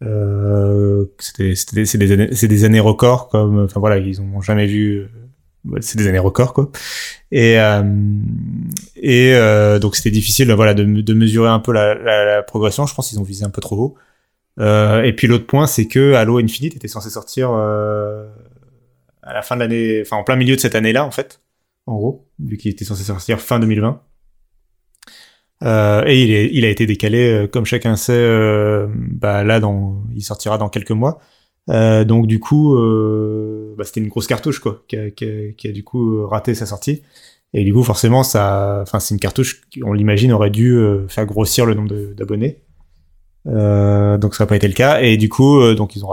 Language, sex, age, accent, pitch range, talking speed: French, male, 20-39, French, 105-120 Hz, 210 wpm